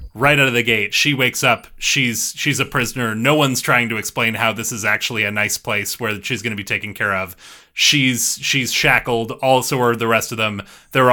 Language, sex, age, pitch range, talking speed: English, male, 30-49, 105-130 Hz, 225 wpm